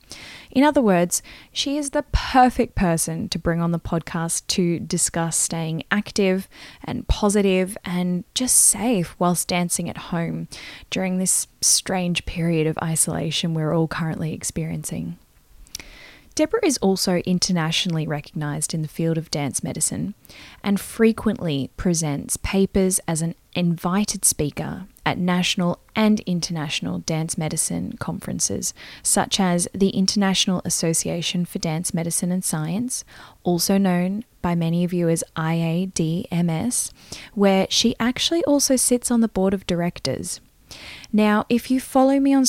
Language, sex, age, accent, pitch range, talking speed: English, female, 10-29, Australian, 165-205 Hz, 135 wpm